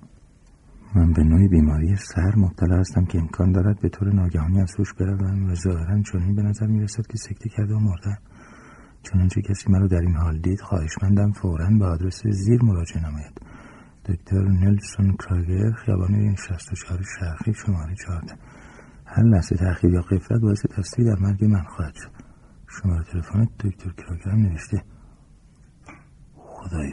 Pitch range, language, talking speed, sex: 95-125 Hz, Persian, 155 wpm, male